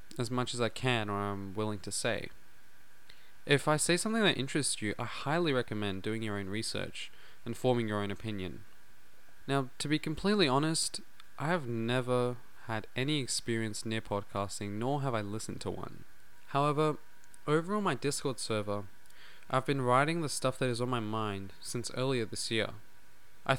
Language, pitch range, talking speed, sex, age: English, 105-135 Hz, 175 wpm, male, 20-39